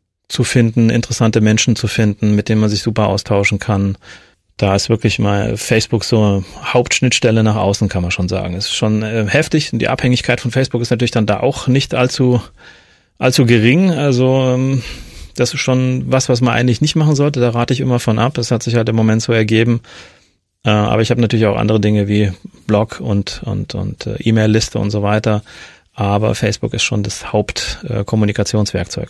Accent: German